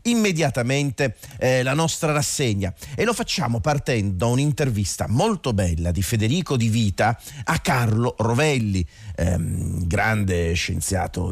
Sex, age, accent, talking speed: male, 40-59, native, 120 wpm